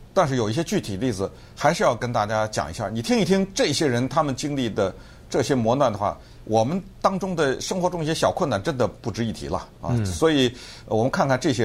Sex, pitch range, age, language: male, 120-185 Hz, 50-69, Chinese